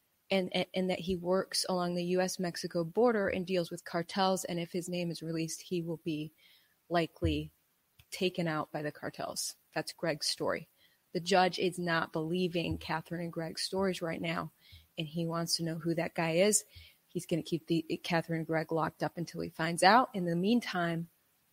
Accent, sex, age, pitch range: American, female, 30-49, 170-220 Hz